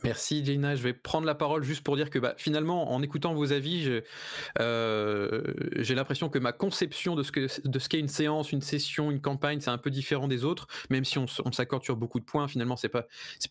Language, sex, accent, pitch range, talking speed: French, male, French, 125-155 Hz, 245 wpm